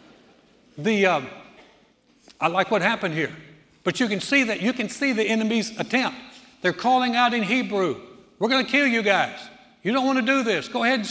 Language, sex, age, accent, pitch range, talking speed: English, male, 60-79, American, 165-225 Hz, 205 wpm